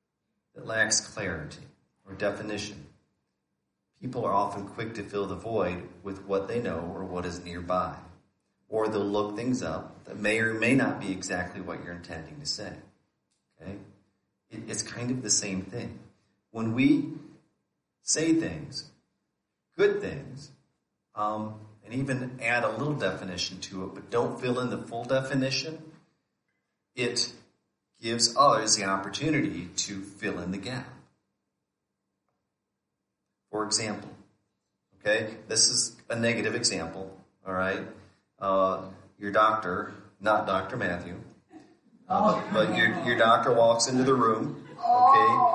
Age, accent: 40-59, American